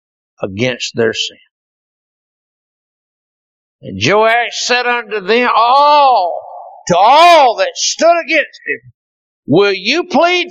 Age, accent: 60-79, American